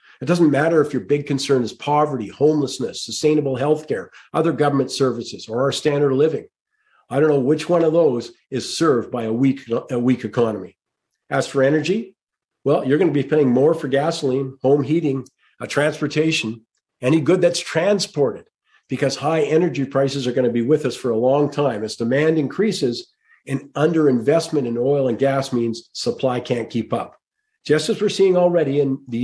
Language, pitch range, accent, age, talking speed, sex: English, 130-155 Hz, American, 50-69, 185 wpm, male